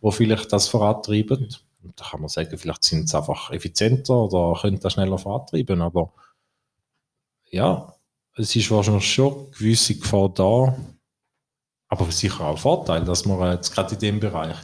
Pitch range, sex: 90-110 Hz, male